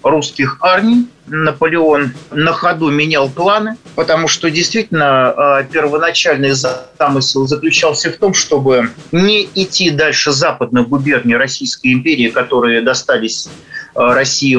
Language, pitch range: Russian, 140-195 Hz